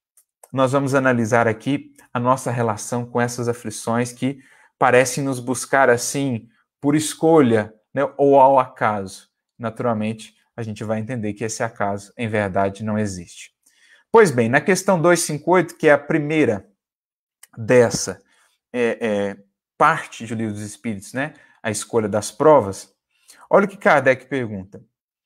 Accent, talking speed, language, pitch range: Brazilian, 140 wpm, Portuguese, 115-170 Hz